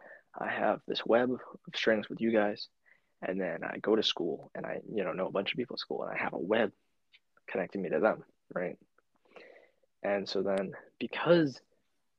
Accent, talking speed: American, 195 wpm